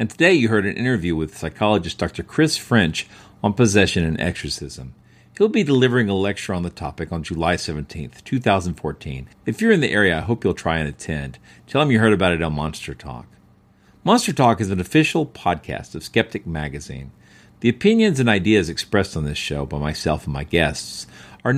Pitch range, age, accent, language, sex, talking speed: 80-120 Hz, 50-69, American, English, male, 195 wpm